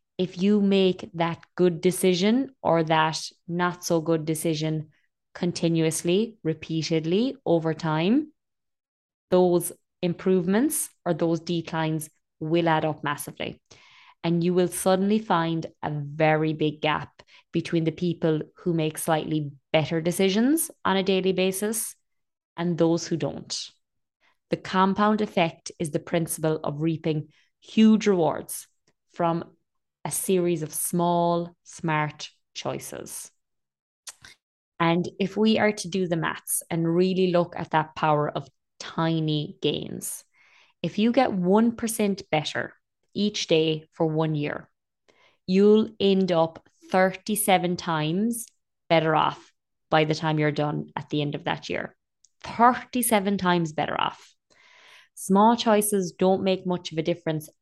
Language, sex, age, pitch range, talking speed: English, female, 20-39, 160-195 Hz, 125 wpm